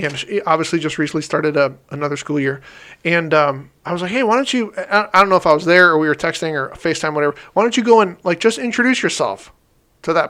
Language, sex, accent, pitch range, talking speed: English, male, American, 160-210 Hz, 250 wpm